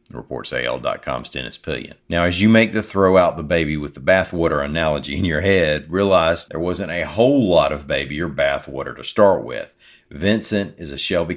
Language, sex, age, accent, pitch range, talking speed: English, male, 50-69, American, 75-90 Hz, 195 wpm